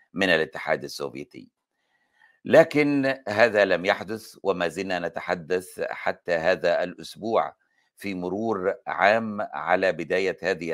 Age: 60-79